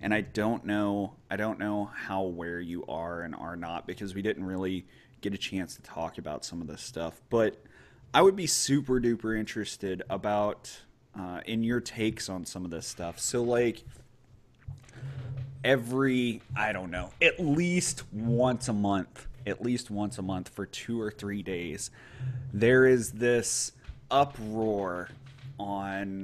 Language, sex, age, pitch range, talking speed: English, male, 30-49, 95-125 Hz, 160 wpm